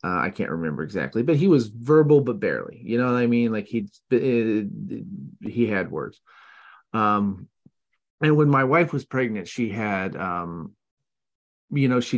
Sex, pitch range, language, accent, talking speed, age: male, 95-130 Hz, English, American, 170 wpm, 30-49